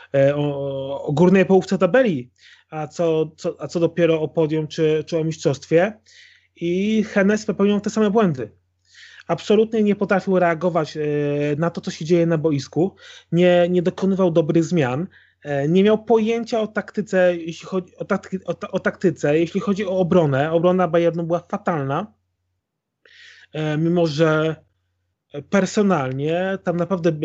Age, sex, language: 30-49, male, Polish